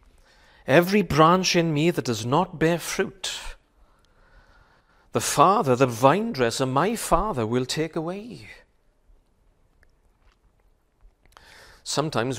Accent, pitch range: British, 120-165 Hz